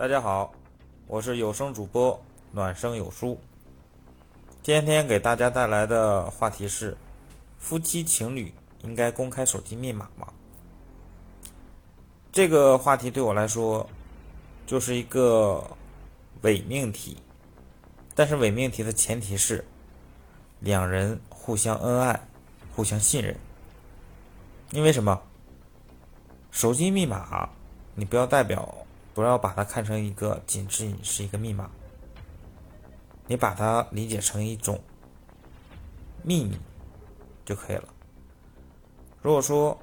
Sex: male